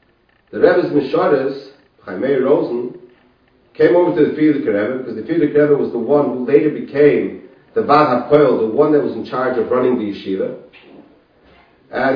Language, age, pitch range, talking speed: English, 50-69, 125-165 Hz, 170 wpm